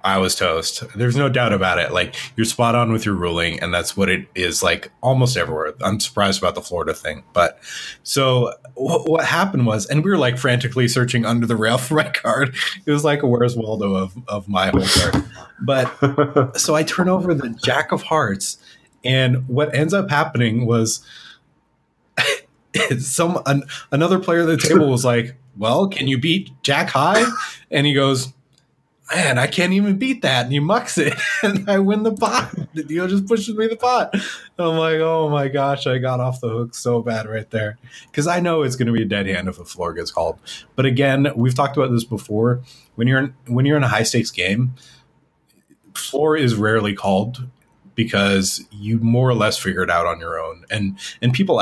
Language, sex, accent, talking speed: English, male, American, 205 wpm